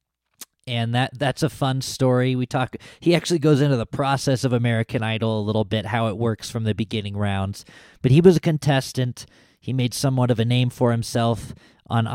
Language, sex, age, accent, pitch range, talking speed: English, male, 20-39, American, 105-130 Hz, 200 wpm